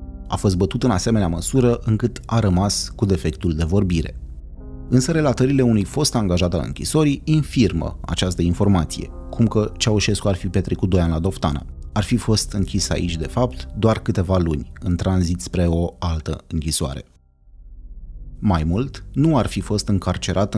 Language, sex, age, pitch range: Romanian, male, 30-49, 80-105 Hz